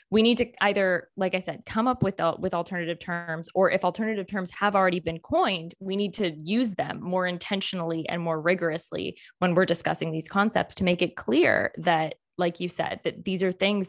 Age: 20-39